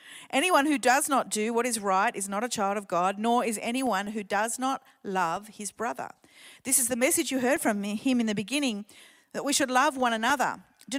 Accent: Australian